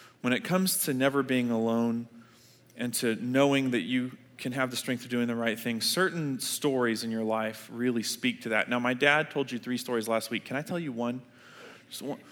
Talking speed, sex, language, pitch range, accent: 220 wpm, male, English, 120-160 Hz, American